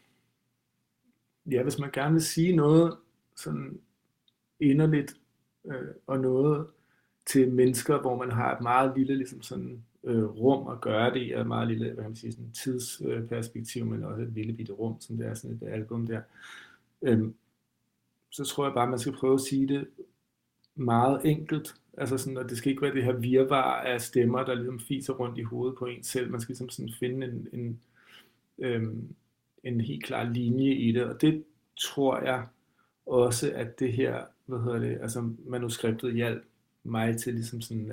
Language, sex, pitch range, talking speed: Danish, male, 115-135 Hz, 175 wpm